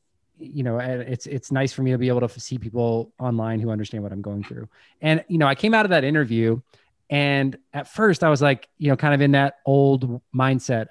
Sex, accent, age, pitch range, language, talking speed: male, American, 20-39, 115-140 Hz, English, 235 wpm